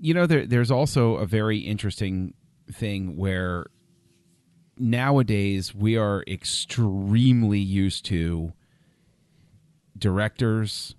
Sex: male